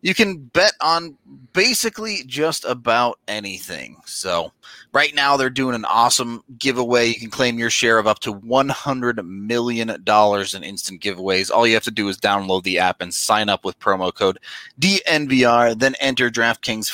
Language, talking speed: English, 170 wpm